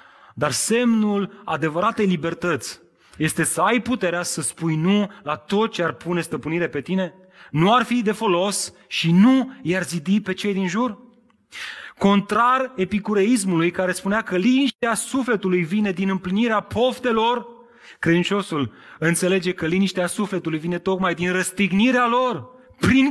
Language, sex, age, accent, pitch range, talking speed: Romanian, male, 30-49, native, 175-235 Hz, 145 wpm